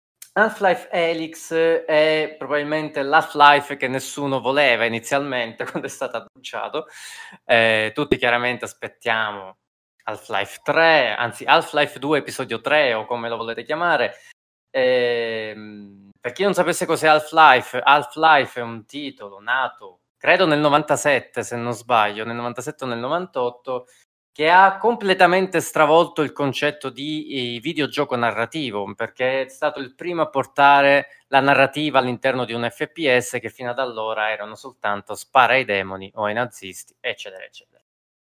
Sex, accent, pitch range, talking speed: male, native, 120-155 Hz, 140 wpm